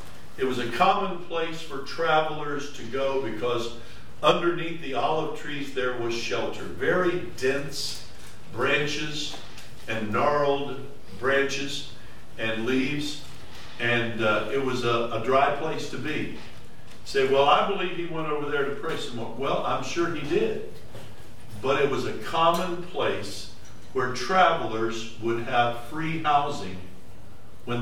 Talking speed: 140 wpm